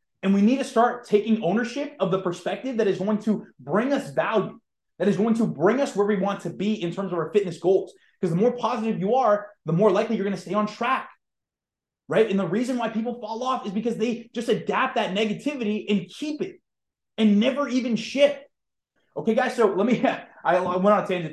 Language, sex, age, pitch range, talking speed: English, male, 20-39, 195-250 Hz, 230 wpm